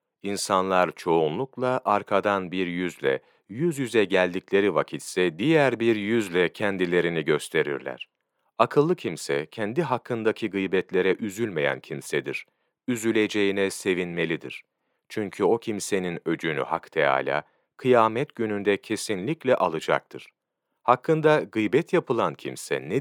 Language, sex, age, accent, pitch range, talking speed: Turkish, male, 40-59, native, 95-120 Hz, 100 wpm